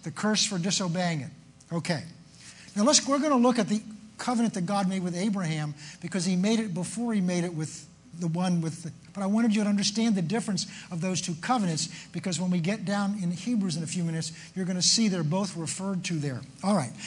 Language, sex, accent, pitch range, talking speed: English, male, American, 165-215 Hz, 235 wpm